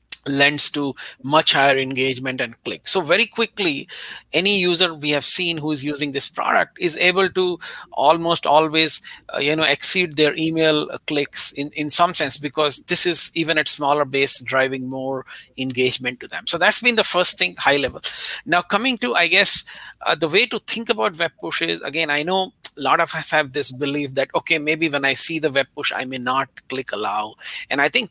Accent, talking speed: Indian, 200 wpm